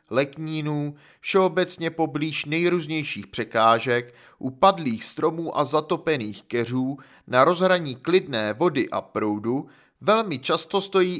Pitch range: 125-185 Hz